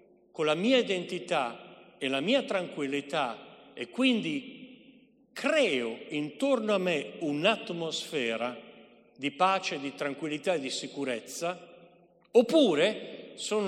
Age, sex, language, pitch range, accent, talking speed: 50-69, male, Italian, 150-215 Hz, native, 105 wpm